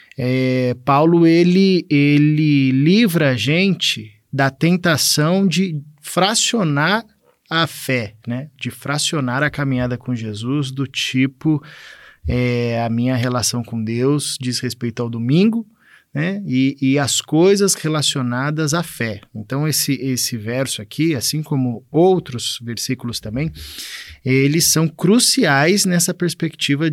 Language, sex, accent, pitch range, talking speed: Portuguese, male, Brazilian, 125-165 Hz, 120 wpm